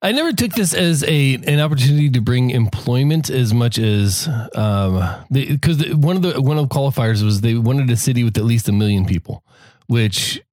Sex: male